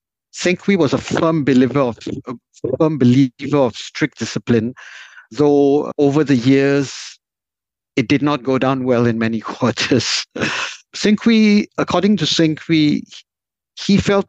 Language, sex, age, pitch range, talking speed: English, male, 60-79, 120-150 Hz, 130 wpm